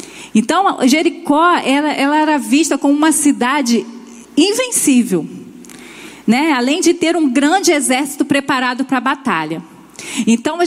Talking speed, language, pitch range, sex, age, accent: 120 wpm, Portuguese, 235-315 Hz, female, 40-59, Brazilian